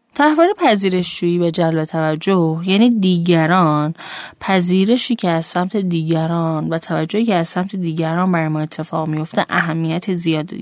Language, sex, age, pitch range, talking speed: Persian, female, 10-29, 165-230 Hz, 135 wpm